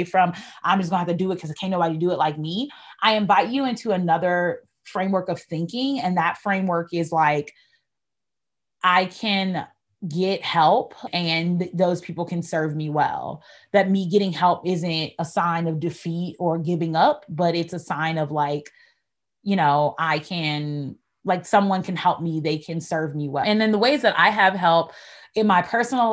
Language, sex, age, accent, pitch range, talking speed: English, female, 20-39, American, 165-195 Hz, 190 wpm